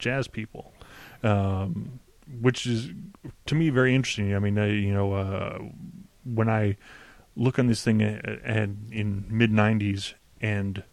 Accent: American